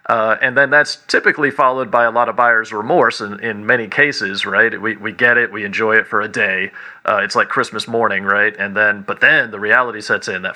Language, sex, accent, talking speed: English, male, American, 240 wpm